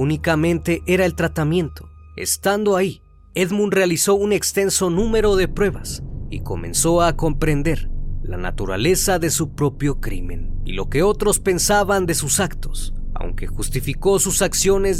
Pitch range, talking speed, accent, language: 125-185 Hz, 140 wpm, Mexican, Spanish